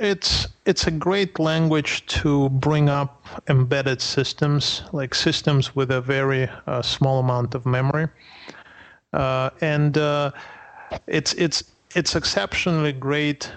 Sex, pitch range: male, 125-150 Hz